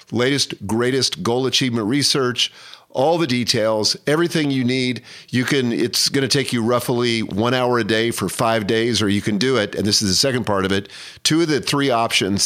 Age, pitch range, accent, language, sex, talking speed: 40-59, 110-140 Hz, American, English, male, 210 wpm